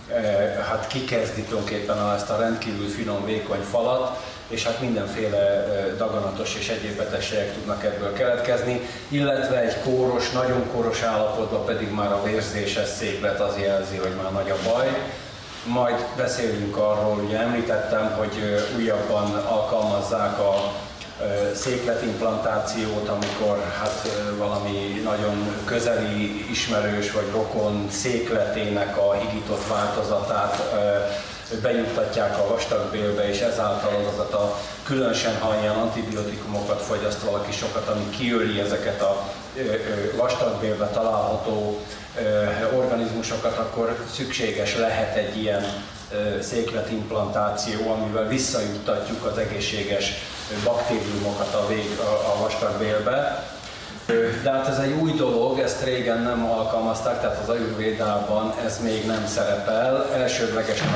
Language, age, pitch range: Hungarian, 30-49, 105-115 Hz